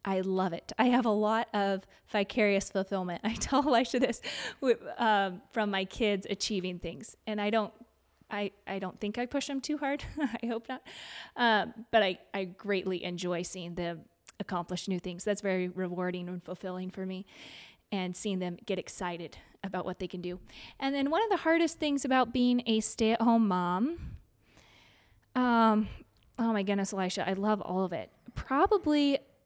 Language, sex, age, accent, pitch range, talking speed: English, female, 20-39, American, 190-225 Hz, 175 wpm